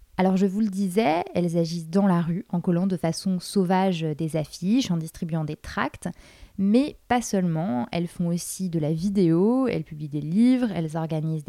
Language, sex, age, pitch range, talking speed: French, female, 20-39, 170-215 Hz, 190 wpm